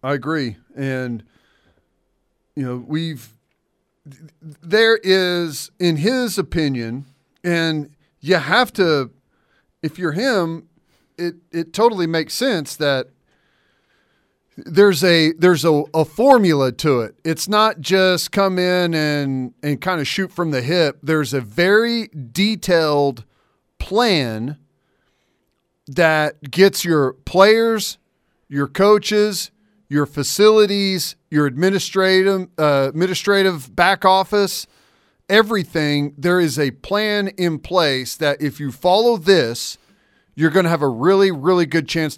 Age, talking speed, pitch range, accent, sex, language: 40-59, 120 wpm, 145-185 Hz, American, male, English